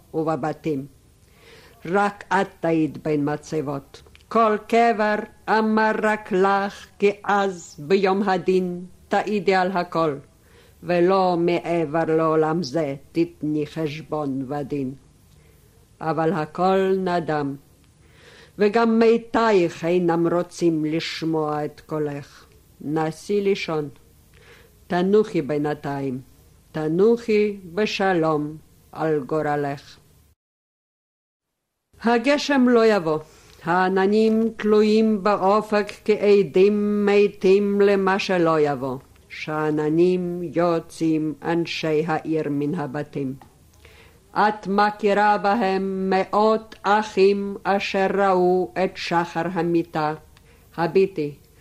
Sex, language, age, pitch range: female, Hebrew, 50-69, 155-205 Hz